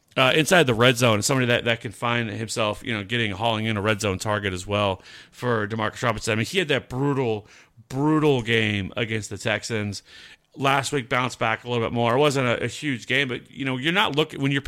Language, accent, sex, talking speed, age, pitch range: English, American, male, 235 wpm, 40-59, 115-150 Hz